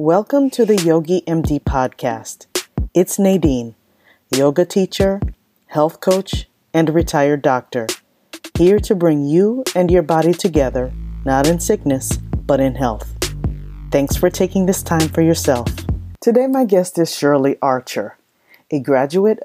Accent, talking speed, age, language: American, 135 wpm, 40-59, English